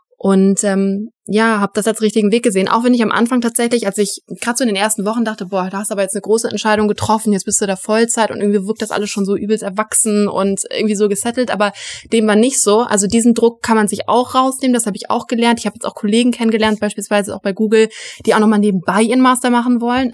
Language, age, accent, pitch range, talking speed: German, 20-39, German, 195-225 Hz, 260 wpm